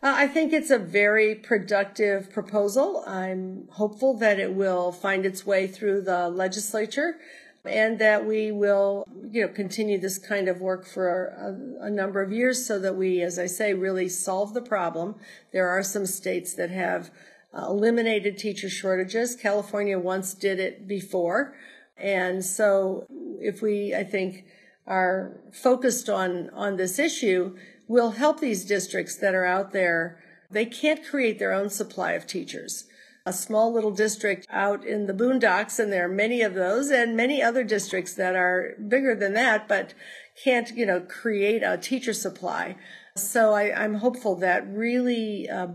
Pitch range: 185-230 Hz